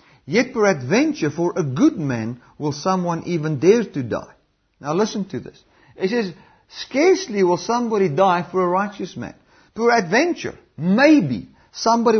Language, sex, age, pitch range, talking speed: English, male, 50-69, 175-240 Hz, 150 wpm